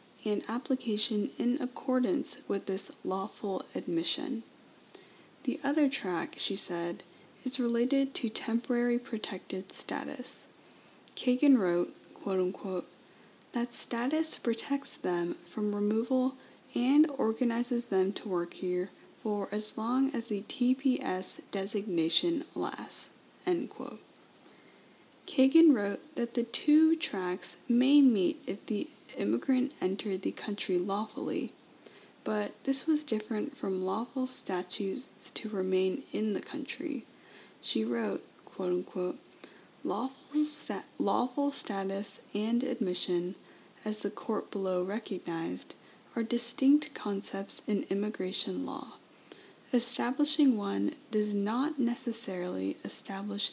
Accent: American